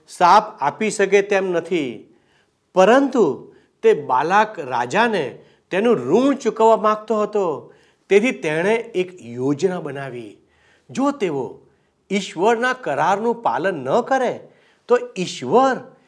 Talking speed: 105 wpm